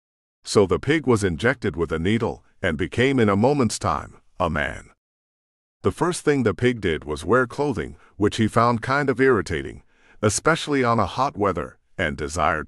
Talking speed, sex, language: 180 wpm, male, English